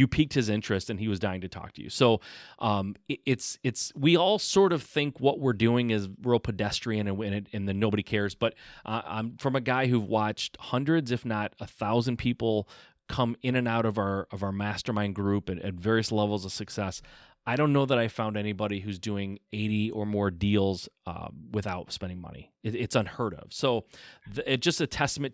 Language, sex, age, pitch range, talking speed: English, male, 30-49, 105-135 Hz, 220 wpm